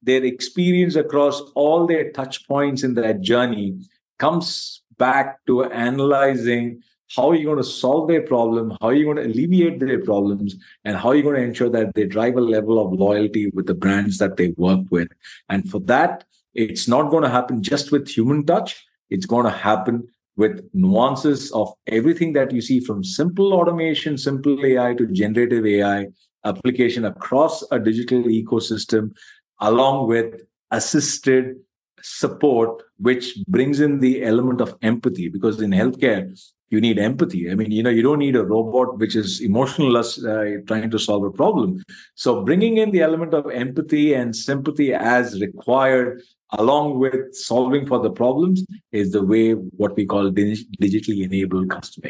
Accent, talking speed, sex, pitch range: Indian, 170 wpm, male, 110-145 Hz